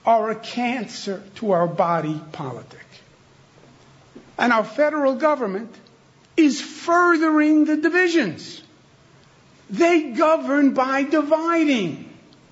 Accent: American